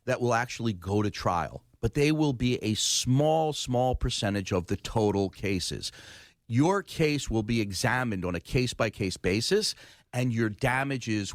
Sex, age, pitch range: male, 40-59, 100-130 Hz